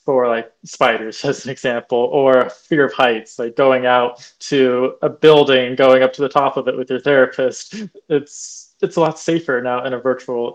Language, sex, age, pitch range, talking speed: English, male, 20-39, 125-140 Hz, 200 wpm